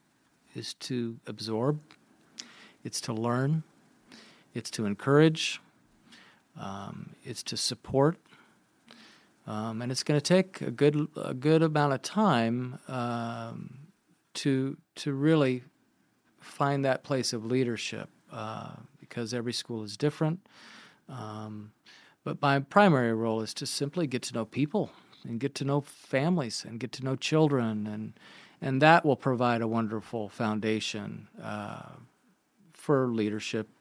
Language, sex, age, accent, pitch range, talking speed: English, male, 40-59, American, 115-140 Hz, 130 wpm